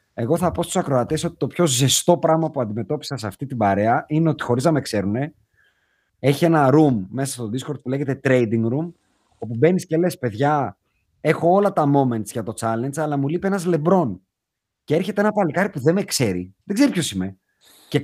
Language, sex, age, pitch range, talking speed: Greek, male, 30-49, 125-170 Hz, 205 wpm